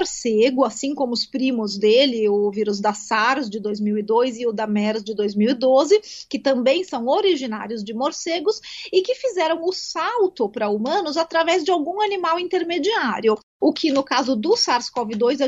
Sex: female